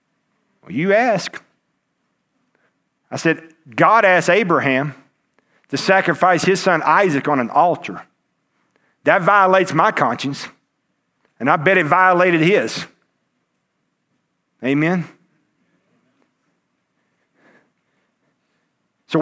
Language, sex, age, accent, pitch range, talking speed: English, male, 50-69, American, 170-280 Hz, 85 wpm